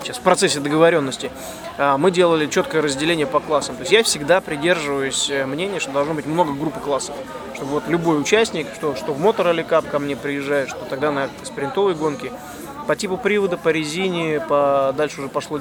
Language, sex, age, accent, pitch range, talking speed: Russian, male, 20-39, native, 145-175 Hz, 180 wpm